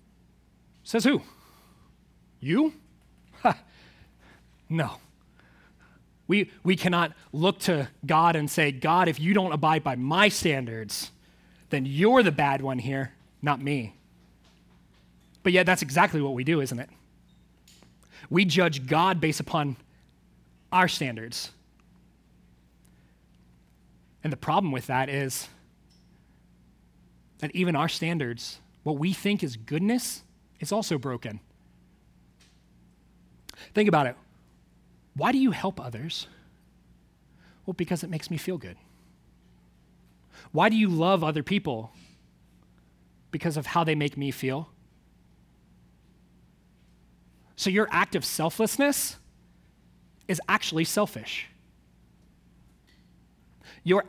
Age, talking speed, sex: 30-49, 110 wpm, male